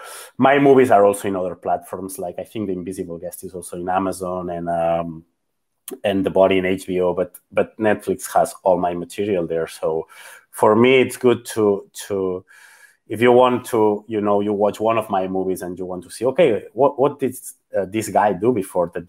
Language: Turkish